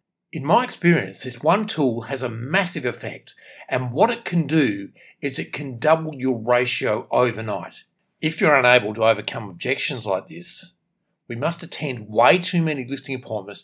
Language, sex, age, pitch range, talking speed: English, male, 50-69, 125-175 Hz, 165 wpm